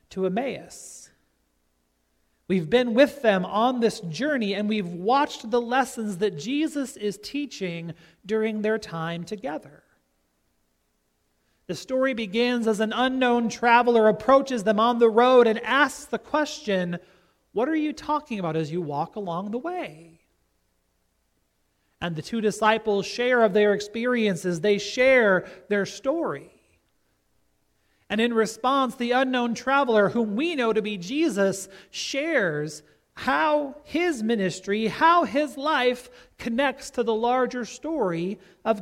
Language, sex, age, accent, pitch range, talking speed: English, male, 40-59, American, 175-245 Hz, 135 wpm